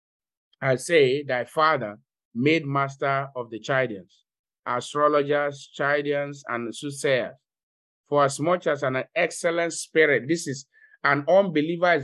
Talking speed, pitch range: 125 wpm, 140-170 Hz